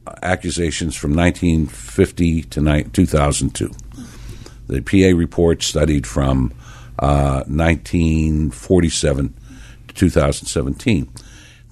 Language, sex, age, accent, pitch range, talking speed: English, male, 60-79, American, 75-115 Hz, 70 wpm